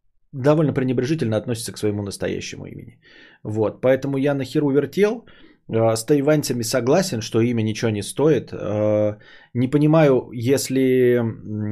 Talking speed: 120 wpm